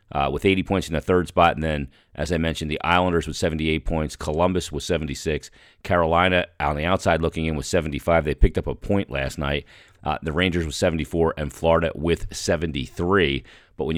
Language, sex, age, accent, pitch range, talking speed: English, male, 40-59, American, 80-95 Hz, 200 wpm